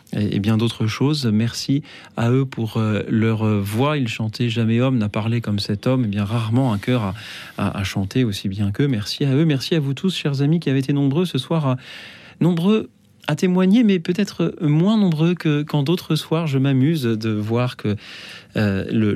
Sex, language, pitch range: male, French, 110-150 Hz